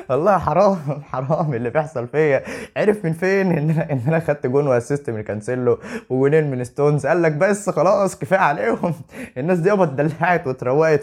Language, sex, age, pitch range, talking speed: Arabic, male, 20-39, 130-170 Hz, 165 wpm